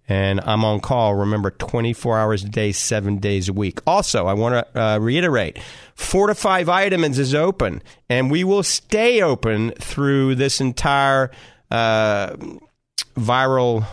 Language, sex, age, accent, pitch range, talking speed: English, male, 40-59, American, 110-135 Hz, 140 wpm